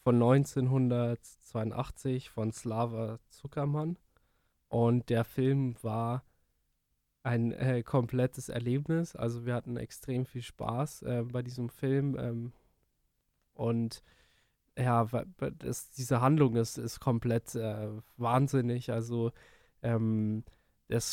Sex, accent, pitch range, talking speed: male, German, 115-135 Hz, 100 wpm